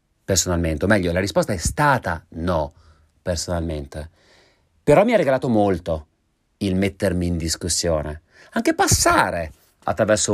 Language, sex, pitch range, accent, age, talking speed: Italian, male, 80-100 Hz, native, 40-59, 120 wpm